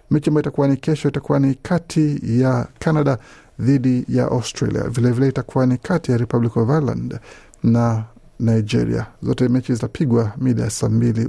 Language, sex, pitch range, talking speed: Swahili, male, 115-140 Hz, 155 wpm